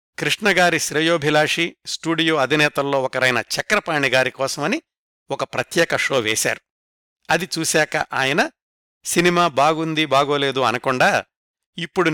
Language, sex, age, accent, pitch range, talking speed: Telugu, male, 60-79, native, 135-170 Hz, 95 wpm